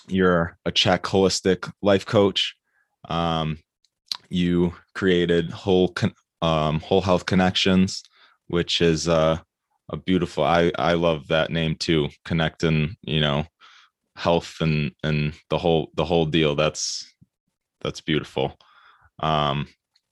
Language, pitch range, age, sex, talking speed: English, 75-85 Hz, 20-39, male, 120 wpm